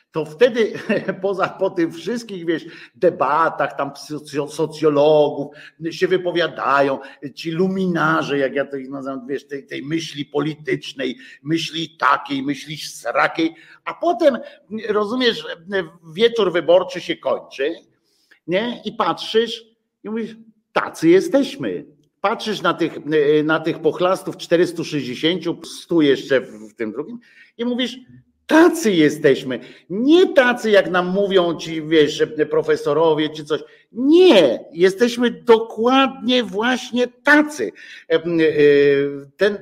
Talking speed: 110 wpm